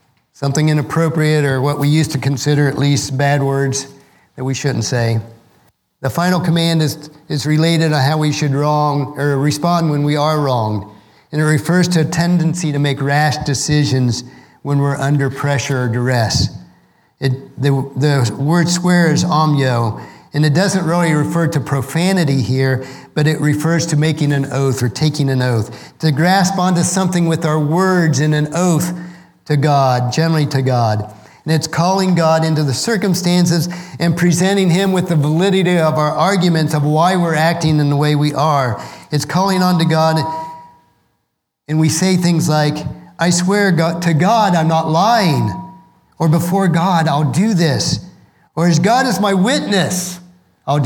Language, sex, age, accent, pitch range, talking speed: English, male, 50-69, American, 140-175 Hz, 170 wpm